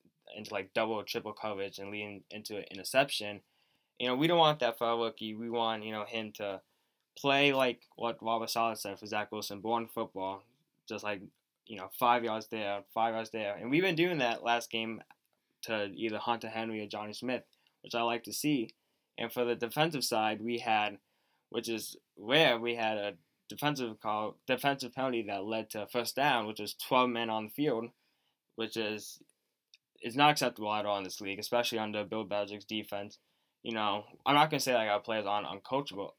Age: 10-29